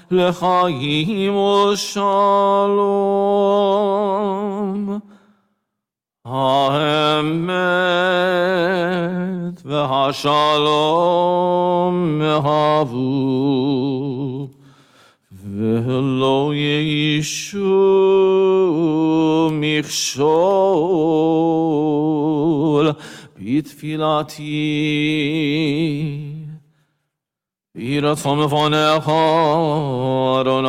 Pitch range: 150-200 Hz